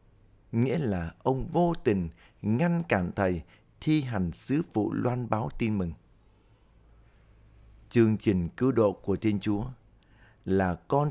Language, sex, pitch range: Vietnamese, male, 100-120 Hz